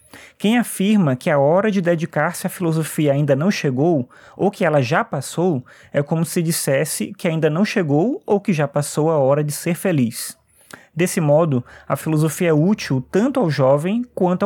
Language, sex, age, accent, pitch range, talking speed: Portuguese, male, 20-39, Brazilian, 145-185 Hz, 185 wpm